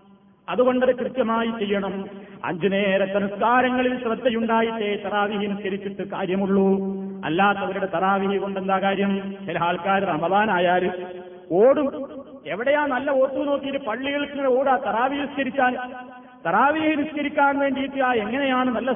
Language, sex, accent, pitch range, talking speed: Malayalam, male, native, 195-255 Hz, 95 wpm